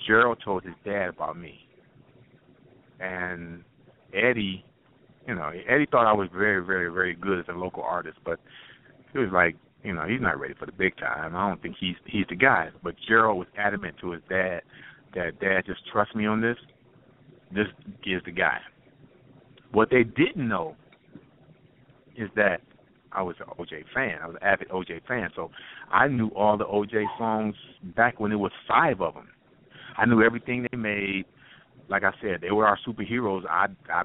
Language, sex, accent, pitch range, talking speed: English, male, American, 100-120 Hz, 185 wpm